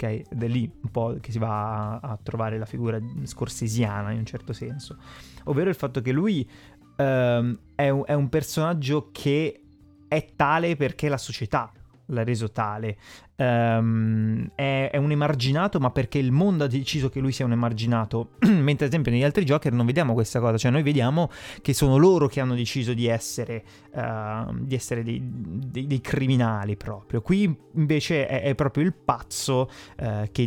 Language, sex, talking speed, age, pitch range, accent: Italian, male, 175 wpm, 30-49, 110-135 Hz, native